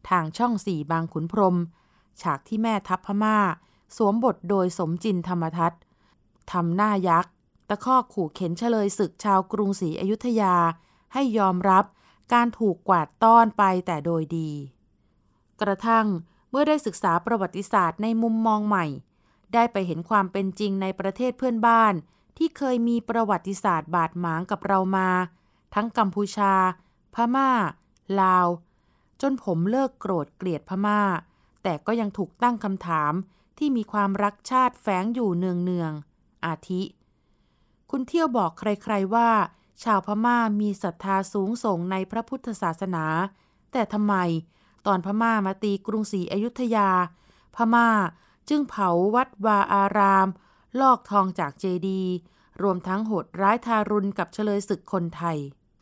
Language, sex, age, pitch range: Thai, female, 20-39, 180-220 Hz